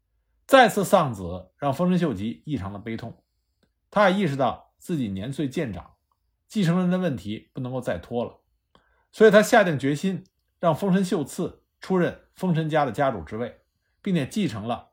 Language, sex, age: Chinese, male, 50-69